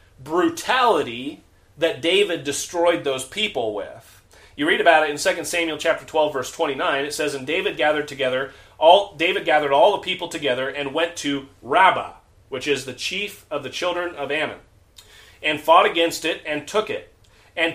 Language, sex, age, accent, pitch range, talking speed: English, male, 30-49, American, 140-185 Hz, 175 wpm